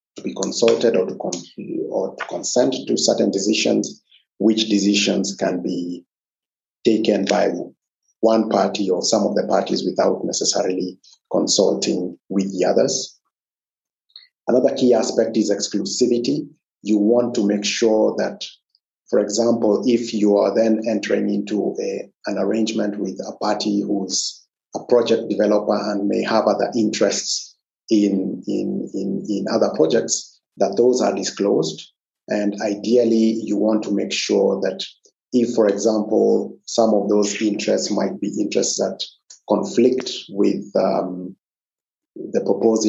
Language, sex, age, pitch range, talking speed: English, male, 50-69, 100-110 Hz, 135 wpm